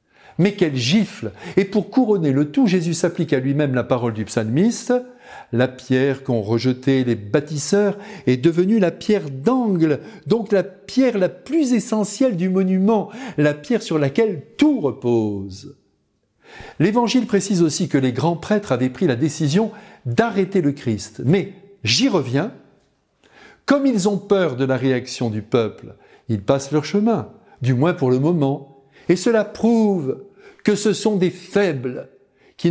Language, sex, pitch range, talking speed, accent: French, male, 135-200 Hz, 155 wpm, French